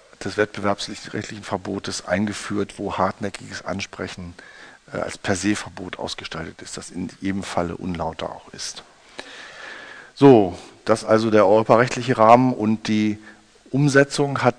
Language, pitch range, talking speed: German, 95-115 Hz, 130 wpm